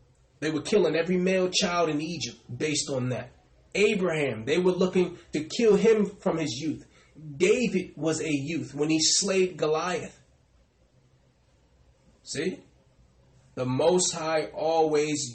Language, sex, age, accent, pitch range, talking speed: English, male, 20-39, American, 120-165 Hz, 135 wpm